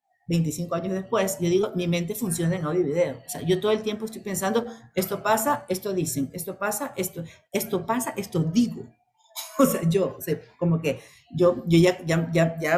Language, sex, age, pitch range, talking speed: Spanish, female, 50-69, 165-215 Hz, 200 wpm